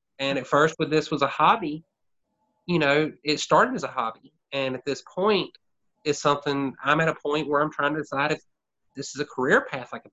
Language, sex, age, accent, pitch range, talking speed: English, male, 30-49, American, 135-170 Hz, 225 wpm